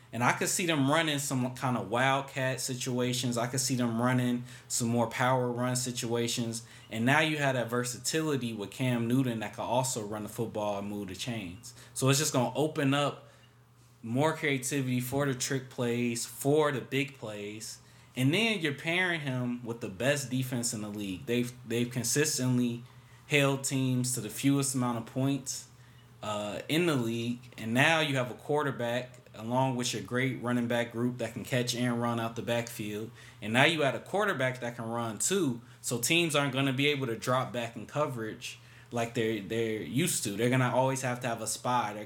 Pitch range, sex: 115-130 Hz, male